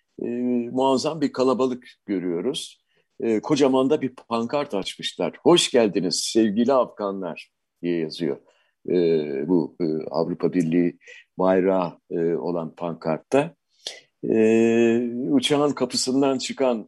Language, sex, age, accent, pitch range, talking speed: Turkish, male, 50-69, native, 110-140 Hz, 105 wpm